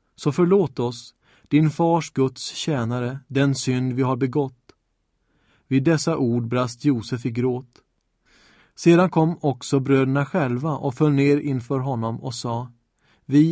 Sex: male